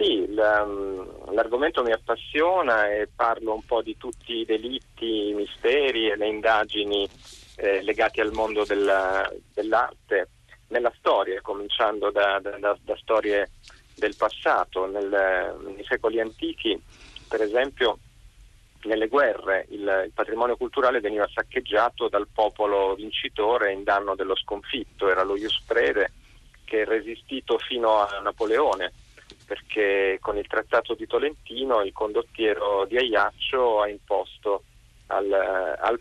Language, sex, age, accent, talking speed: Italian, male, 30-49, native, 130 wpm